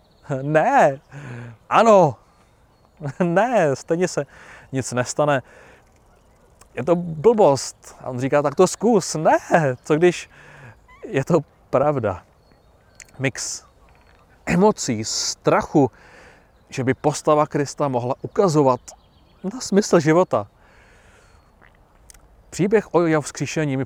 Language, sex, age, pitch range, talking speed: Czech, male, 30-49, 115-150 Hz, 100 wpm